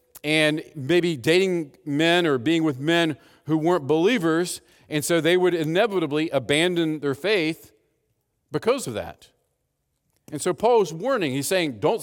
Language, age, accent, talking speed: English, 50-69, American, 145 wpm